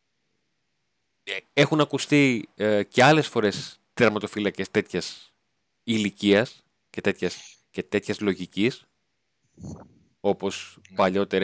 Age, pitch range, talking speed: 30-49, 100-140 Hz, 85 wpm